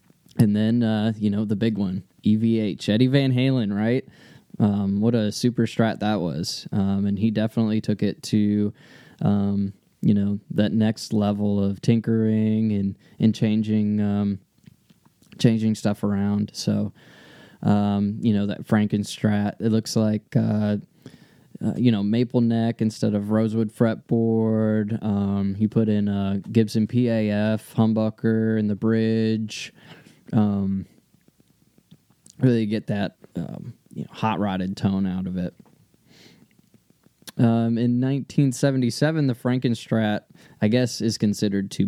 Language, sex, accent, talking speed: English, male, American, 135 wpm